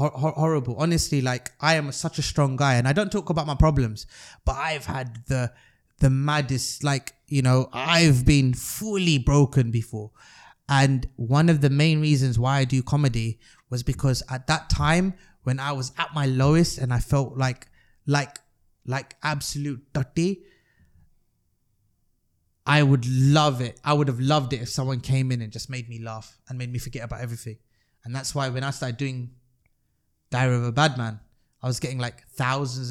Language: English